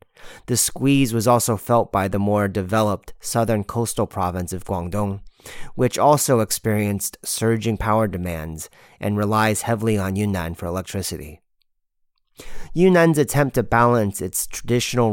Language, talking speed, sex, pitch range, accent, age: English, 130 wpm, male, 95-115 Hz, American, 30-49